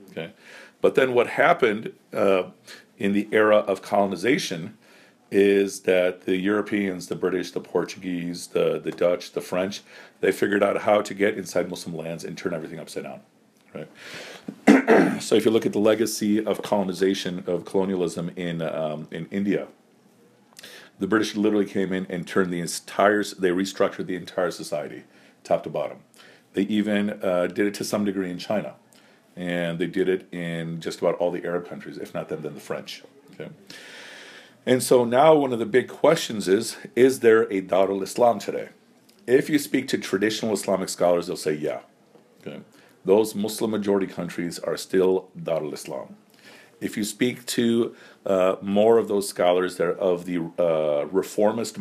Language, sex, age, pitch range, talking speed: English, male, 50-69, 90-105 Hz, 170 wpm